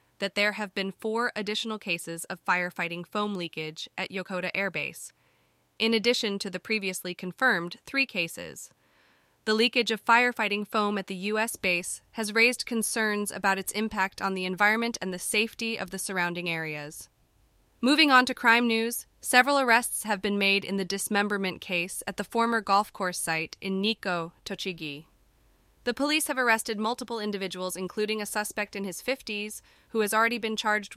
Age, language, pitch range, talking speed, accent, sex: 20-39, English, 180-220 Hz, 170 wpm, American, female